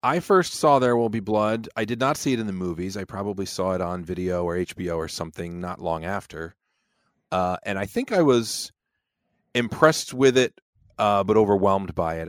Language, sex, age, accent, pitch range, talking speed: English, male, 30-49, American, 85-110 Hz, 205 wpm